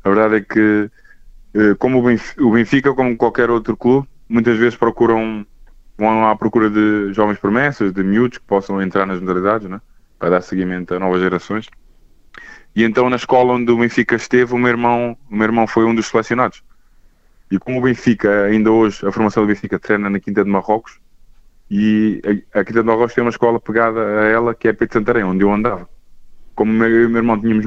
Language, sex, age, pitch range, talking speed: Portuguese, male, 20-39, 100-120 Hz, 200 wpm